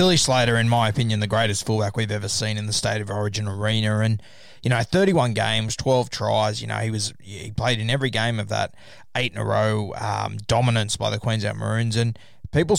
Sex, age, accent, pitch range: male, 20-39, Australian, 110-125 Hz